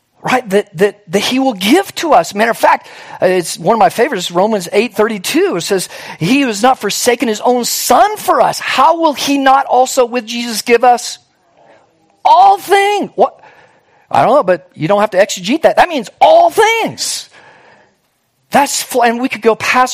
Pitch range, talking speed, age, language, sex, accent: 180-265 Hz, 190 wpm, 40-59, English, male, American